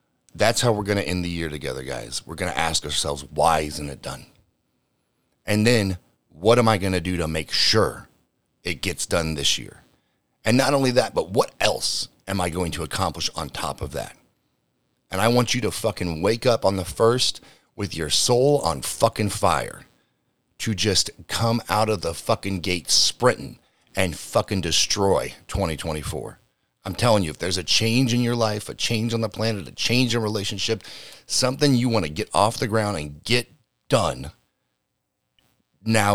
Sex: male